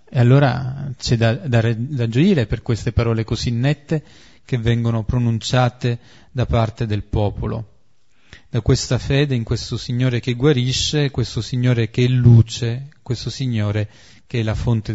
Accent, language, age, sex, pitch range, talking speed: native, Italian, 30-49, male, 105-125 Hz, 155 wpm